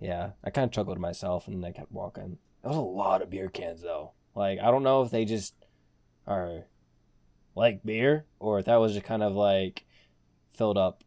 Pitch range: 90-125 Hz